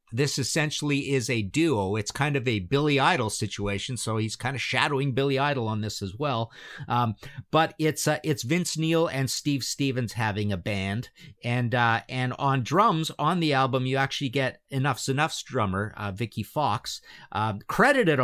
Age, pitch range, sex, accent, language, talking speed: 50-69, 110-145 Hz, male, American, English, 180 wpm